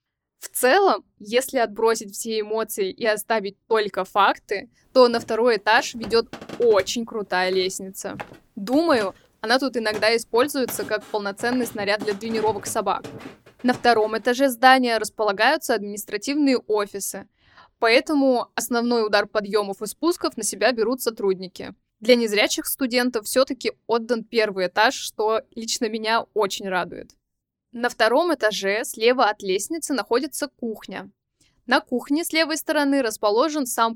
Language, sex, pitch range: Russian, female, 210-255 Hz